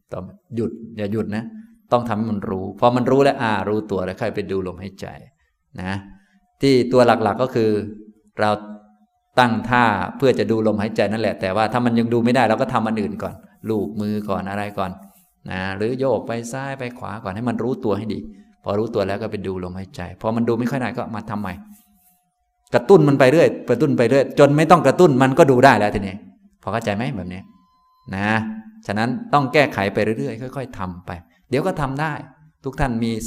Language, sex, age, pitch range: Thai, male, 20-39, 100-125 Hz